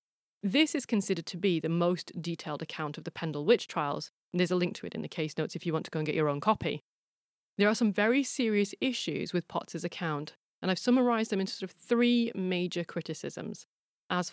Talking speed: 225 wpm